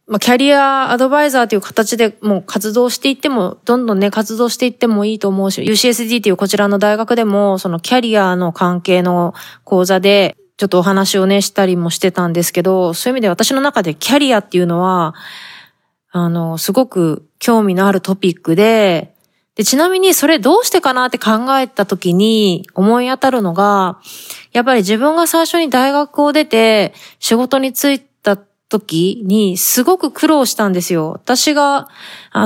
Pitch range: 195-250 Hz